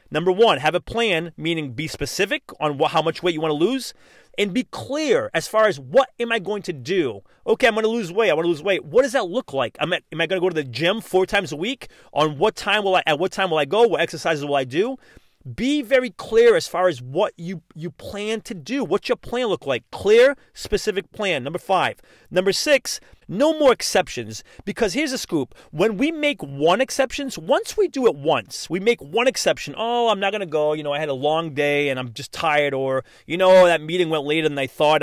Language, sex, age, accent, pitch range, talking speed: English, male, 30-49, American, 155-250 Hz, 250 wpm